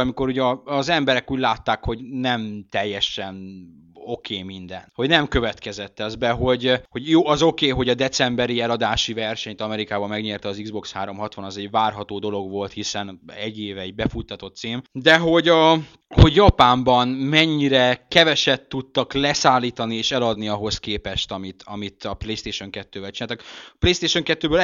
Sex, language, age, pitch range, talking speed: male, Hungarian, 20-39, 105-145 Hz, 160 wpm